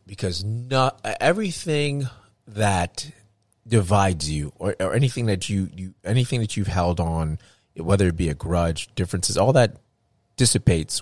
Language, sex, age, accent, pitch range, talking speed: English, male, 30-49, American, 90-110 Hz, 140 wpm